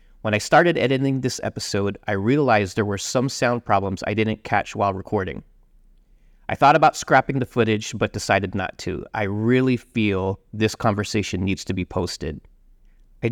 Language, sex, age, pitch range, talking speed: English, male, 30-49, 100-130 Hz, 170 wpm